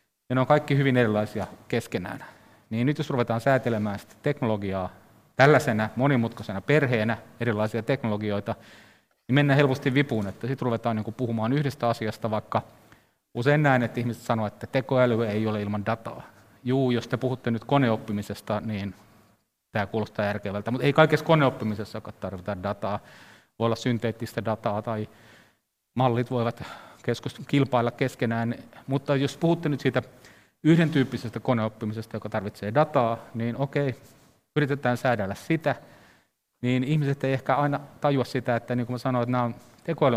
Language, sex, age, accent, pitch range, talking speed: Finnish, male, 30-49, native, 110-135 Hz, 135 wpm